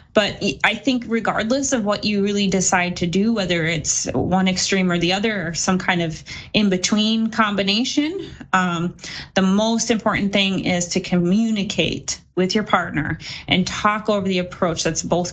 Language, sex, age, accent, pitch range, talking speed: English, female, 20-39, American, 170-215 Hz, 165 wpm